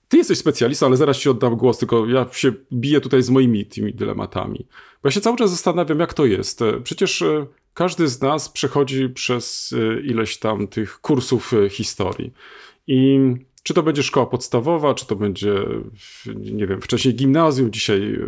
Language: Polish